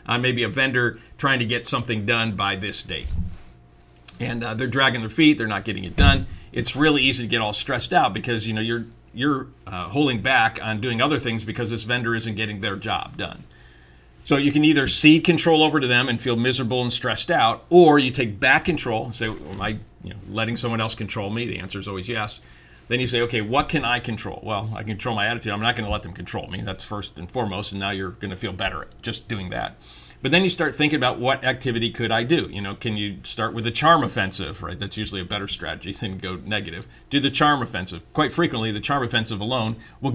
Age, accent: 50-69, American